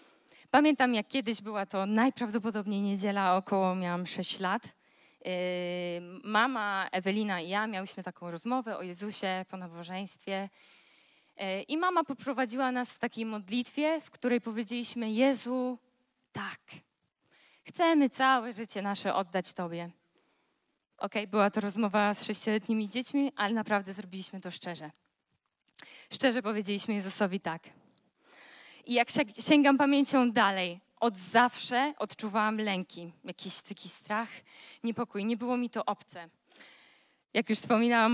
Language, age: Polish, 20-39